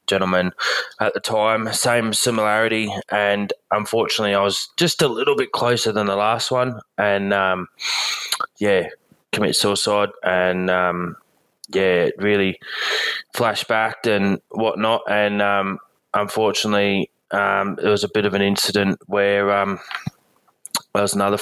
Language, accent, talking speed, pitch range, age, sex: English, Australian, 130 wpm, 95-110 Hz, 20-39, male